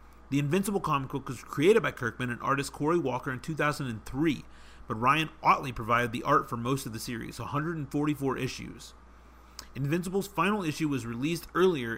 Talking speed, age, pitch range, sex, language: 165 wpm, 40-59, 115-160 Hz, male, English